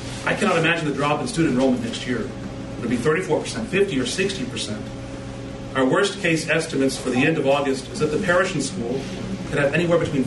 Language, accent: English, American